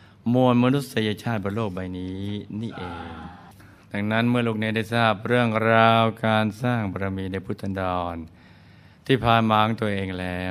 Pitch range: 90-110 Hz